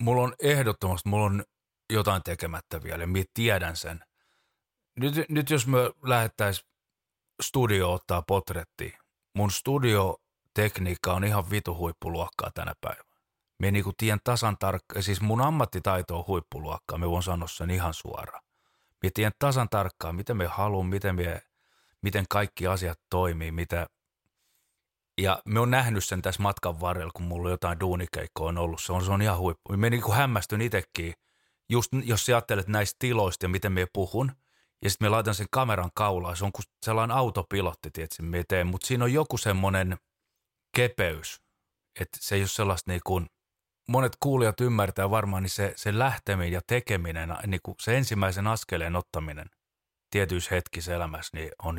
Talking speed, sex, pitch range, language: 150 wpm, male, 85-110 Hz, Finnish